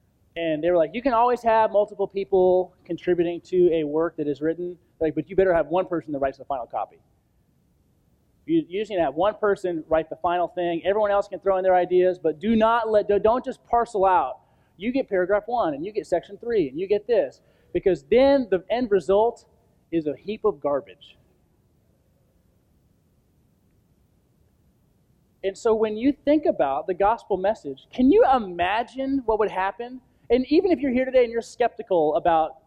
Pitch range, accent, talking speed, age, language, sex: 170-245 Hz, American, 180 wpm, 30-49, English, male